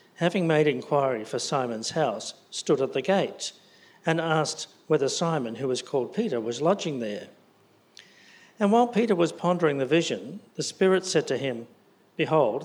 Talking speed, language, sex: 160 wpm, English, male